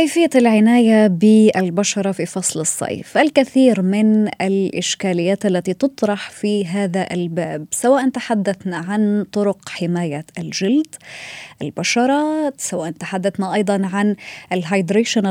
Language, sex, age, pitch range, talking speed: Arabic, female, 20-39, 180-235 Hz, 100 wpm